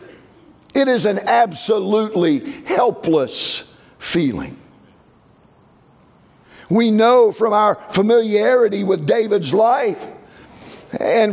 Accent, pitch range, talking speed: American, 215-275 Hz, 80 wpm